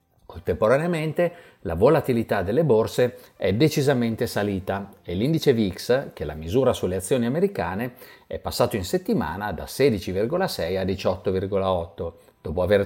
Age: 50-69